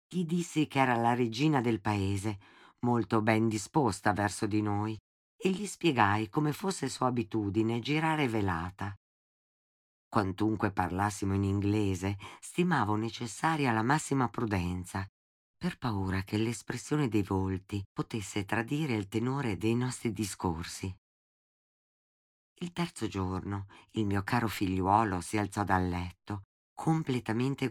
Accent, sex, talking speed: native, female, 125 wpm